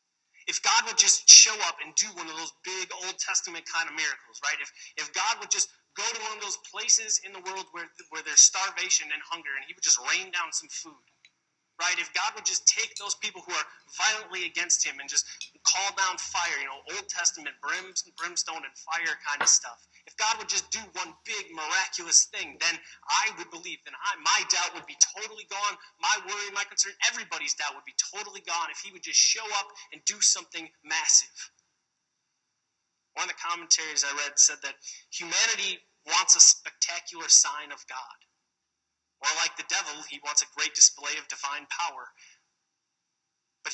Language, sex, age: English, male, 30-49